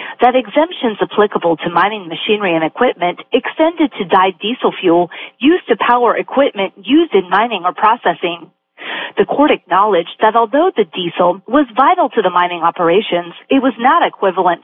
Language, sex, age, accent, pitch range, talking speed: English, female, 40-59, American, 175-270 Hz, 160 wpm